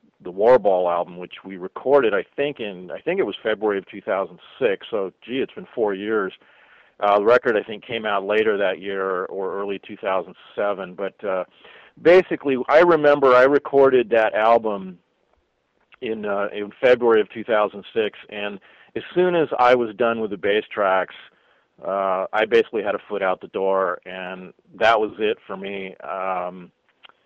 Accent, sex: American, male